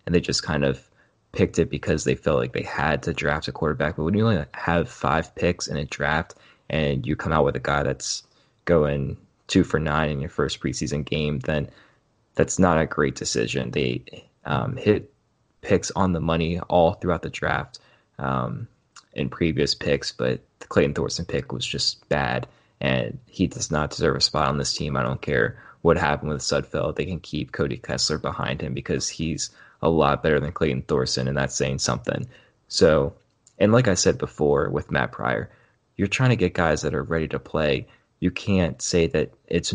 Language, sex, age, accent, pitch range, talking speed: English, male, 20-39, American, 70-90 Hz, 200 wpm